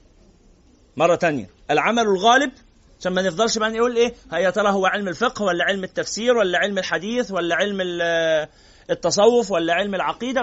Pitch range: 185-250 Hz